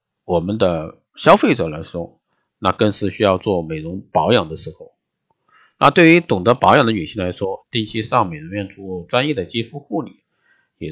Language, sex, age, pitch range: Chinese, male, 50-69, 90-125 Hz